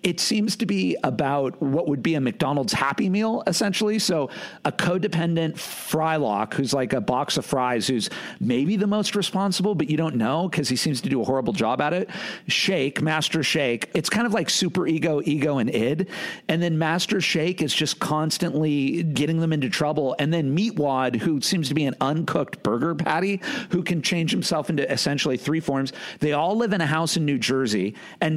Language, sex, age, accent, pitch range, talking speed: English, male, 50-69, American, 145-190 Hz, 200 wpm